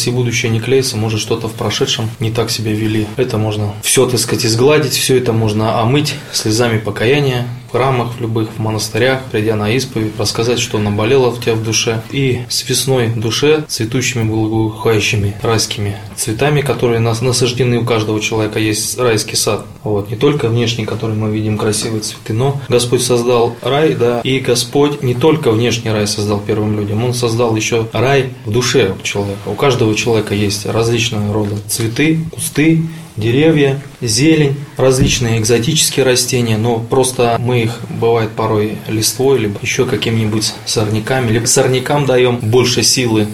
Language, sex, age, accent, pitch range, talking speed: Russian, male, 20-39, native, 110-125 Hz, 160 wpm